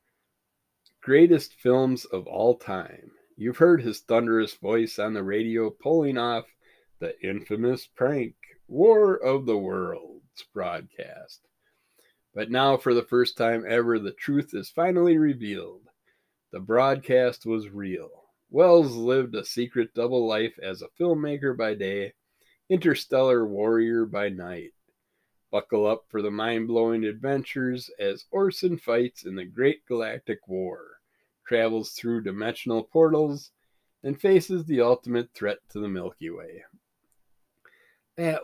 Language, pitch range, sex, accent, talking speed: English, 105-135 Hz, male, American, 130 wpm